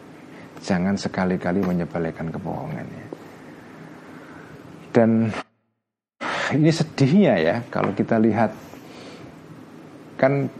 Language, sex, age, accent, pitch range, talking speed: Indonesian, male, 50-69, native, 110-165 Hz, 70 wpm